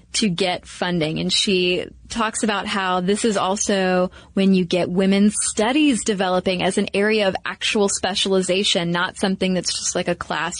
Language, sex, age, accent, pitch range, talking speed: English, female, 20-39, American, 185-230 Hz, 170 wpm